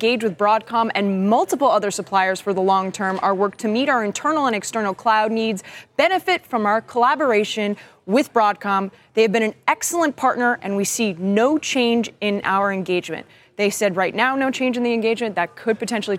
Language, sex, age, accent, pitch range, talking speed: English, female, 20-39, American, 190-235 Hz, 195 wpm